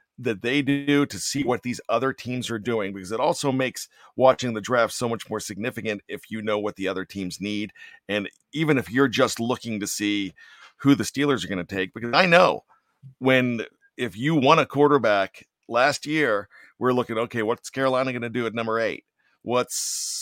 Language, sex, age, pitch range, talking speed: English, male, 50-69, 110-135 Hz, 200 wpm